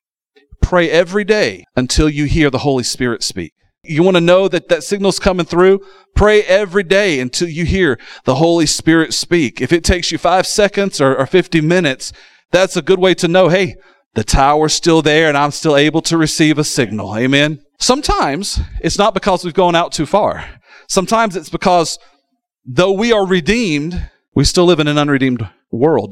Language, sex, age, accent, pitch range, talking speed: English, male, 40-59, American, 145-190 Hz, 190 wpm